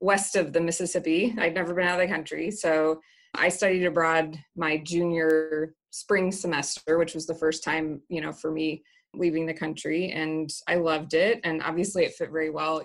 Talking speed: 195 wpm